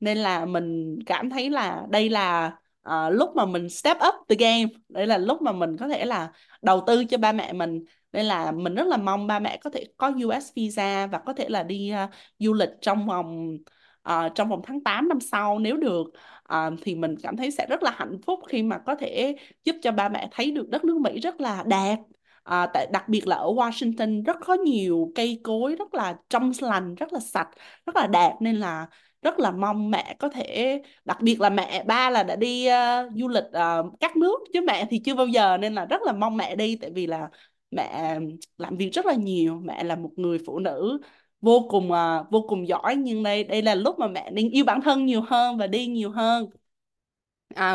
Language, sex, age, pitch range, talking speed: Vietnamese, female, 20-39, 185-255 Hz, 230 wpm